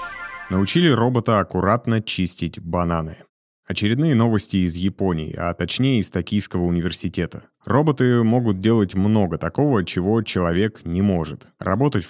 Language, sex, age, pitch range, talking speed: Russian, male, 30-49, 90-110 Hz, 120 wpm